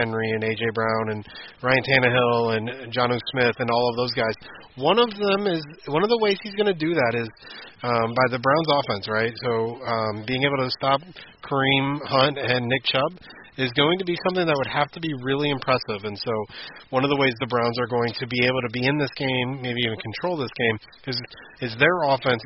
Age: 30-49